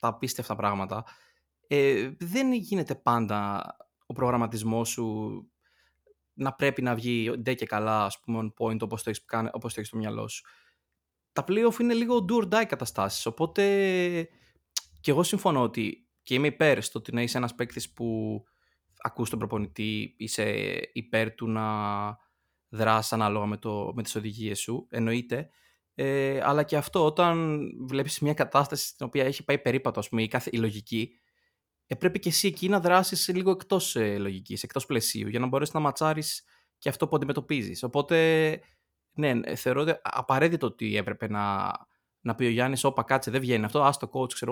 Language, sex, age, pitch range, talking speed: Greek, male, 20-39, 110-145 Hz, 165 wpm